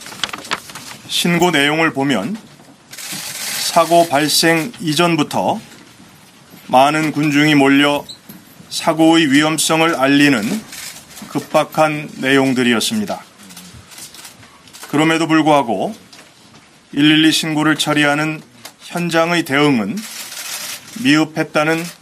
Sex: male